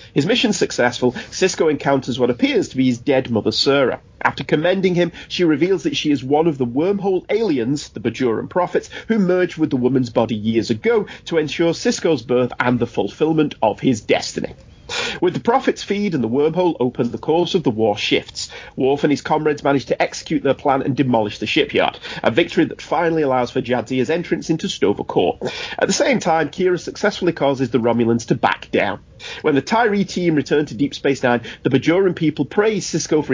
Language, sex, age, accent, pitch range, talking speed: English, male, 30-49, British, 125-170 Hz, 200 wpm